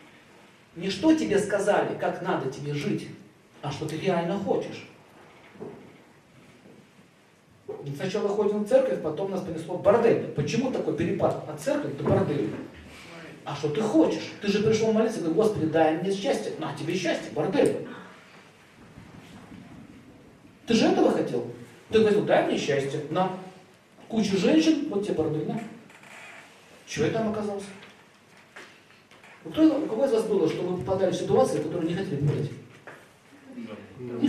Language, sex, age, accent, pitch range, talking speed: Russian, male, 40-59, native, 160-220 Hz, 150 wpm